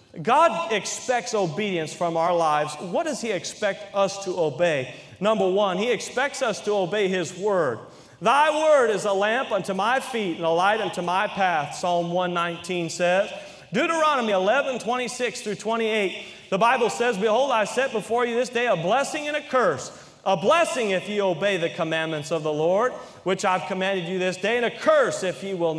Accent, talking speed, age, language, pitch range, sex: American, 195 wpm, 40-59, English, 180-245 Hz, male